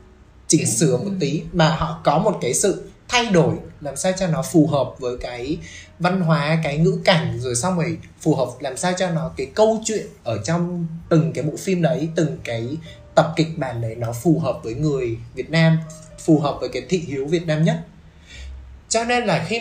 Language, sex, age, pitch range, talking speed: Vietnamese, male, 20-39, 140-195 Hz, 215 wpm